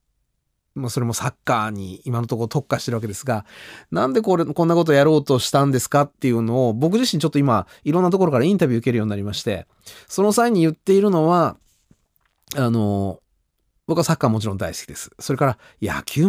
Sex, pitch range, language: male, 110-185 Hz, Japanese